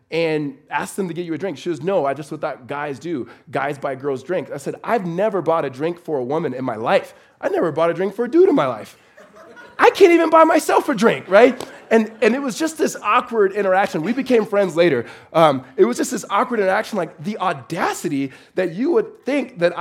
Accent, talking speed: American, 240 wpm